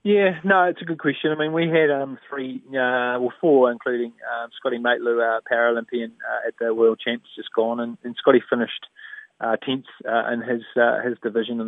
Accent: Australian